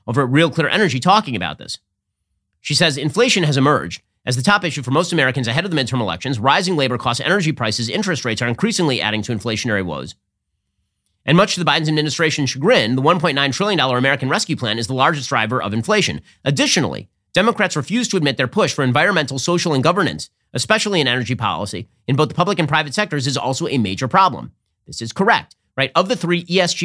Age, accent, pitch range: 30-49, American, 115-165 Hz